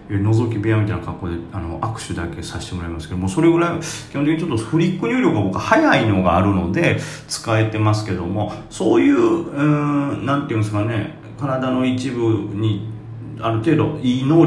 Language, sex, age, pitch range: Japanese, male, 40-59, 100-150 Hz